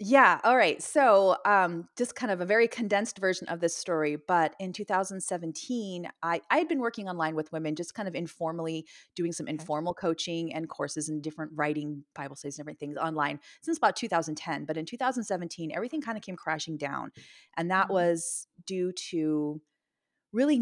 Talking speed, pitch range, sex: 180 wpm, 155-190 Hz, female